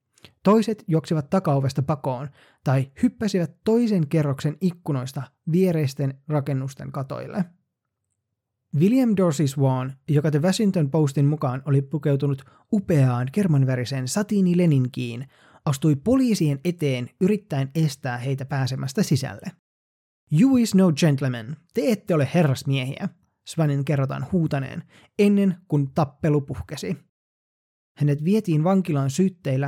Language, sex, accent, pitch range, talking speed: Finnish, male, native, 135-175 Hz, 105 wpm